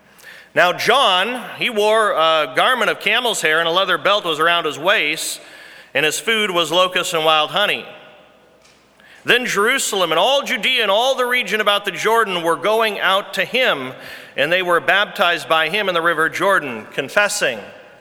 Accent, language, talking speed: American, English, 175 wpm